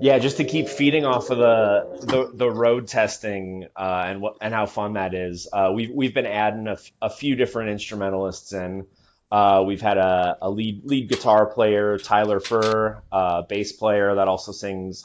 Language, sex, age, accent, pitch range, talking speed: English, male, 20-39, American, 95-115 Hz, 205 wpm